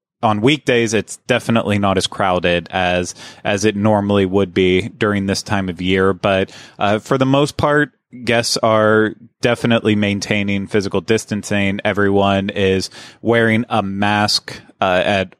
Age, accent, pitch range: 30-49, American, 100-120 Hz